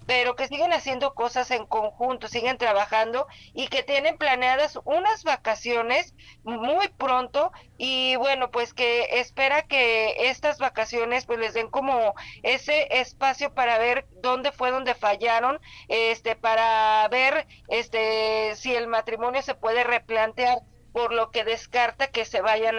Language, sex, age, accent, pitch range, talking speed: Spanish, female, 40-59, Mexican, 225-265 Hz, 140 wpm